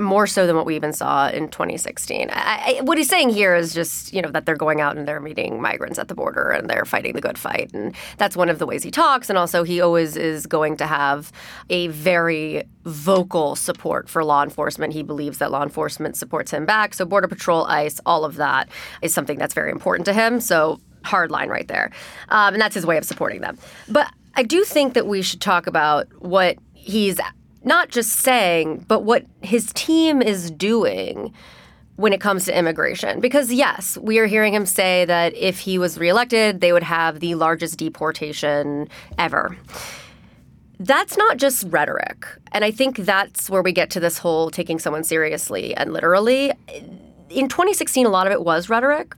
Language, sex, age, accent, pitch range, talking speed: English, female, 20-39, American, 160-220 Hz, 200 wpm